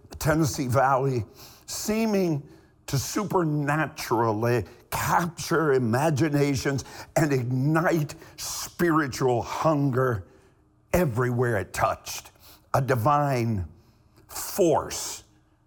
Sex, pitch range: male, 120-160 Hz